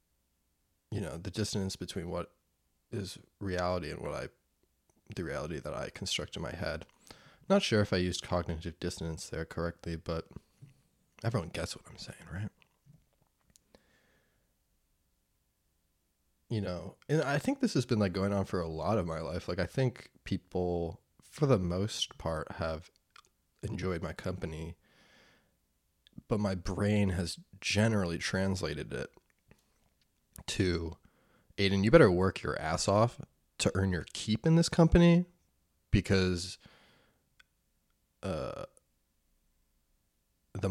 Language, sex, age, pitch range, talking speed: English, male, 20-39, 85-110 Hz, 130 wpm